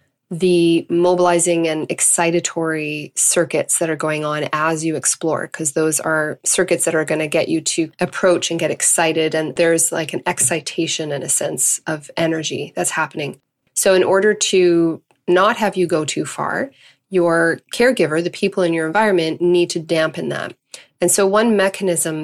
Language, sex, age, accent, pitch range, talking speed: English, female, 20-39, American, 160-180 Hz, 175 wpm